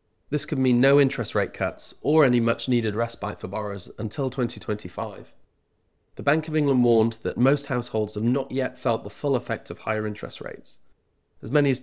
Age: 30-49